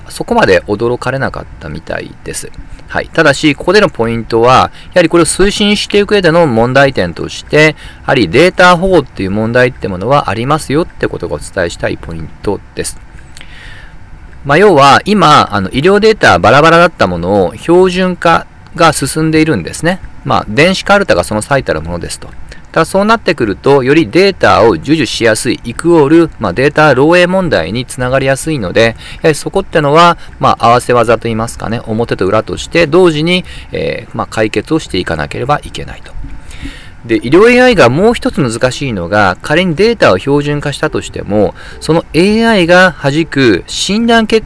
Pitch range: 115-175 Hz